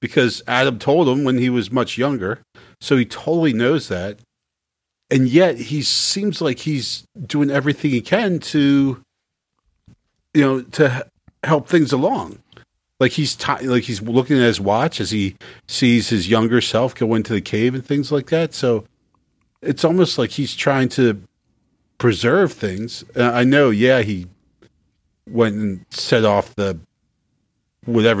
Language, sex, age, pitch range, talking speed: English, male, 40-59, 105-140 Hz, 155 wpm